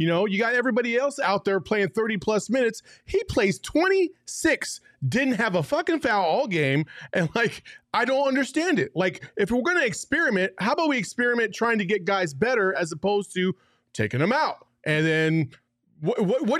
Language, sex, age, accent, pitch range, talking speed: English, male, 30-49, American, 165-240 Hz, 190 wpm